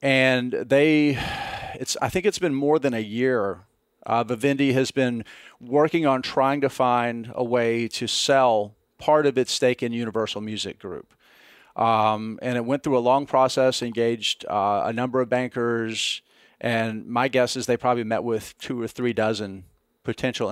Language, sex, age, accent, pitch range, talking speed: English, male, 40-59, American, 115-135 Hz, 175 wpm